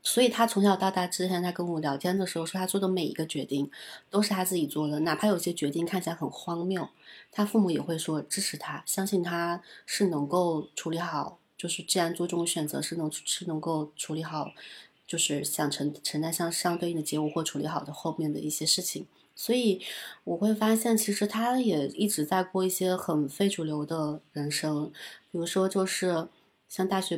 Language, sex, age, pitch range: Chinese, female, 20-39, 155-190 Hz